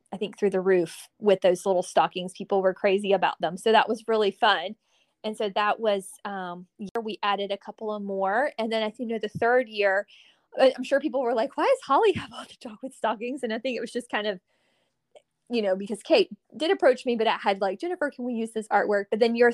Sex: female